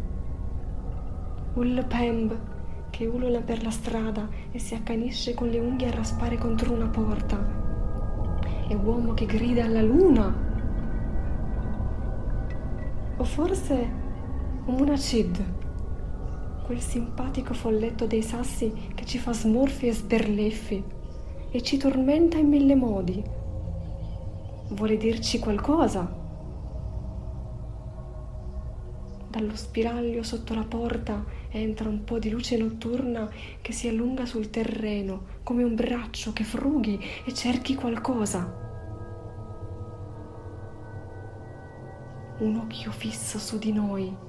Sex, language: female, Italian